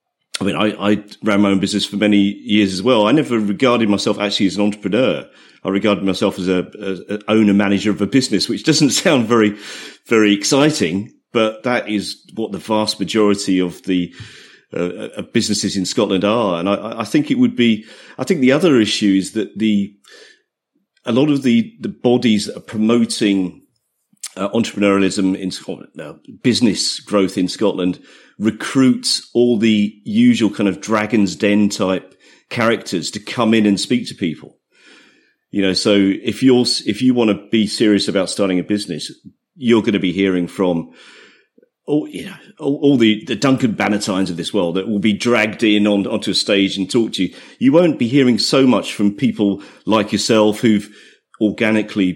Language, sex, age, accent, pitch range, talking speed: English, male, 40-59, British, 100-115 Hz, 185 wpm